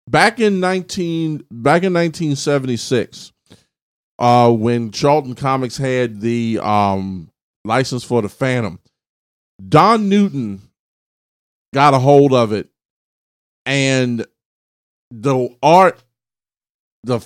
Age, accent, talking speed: 40-59, American, 95 wpm